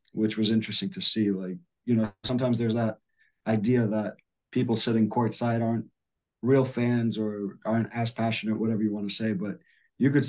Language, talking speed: English, 180 wpm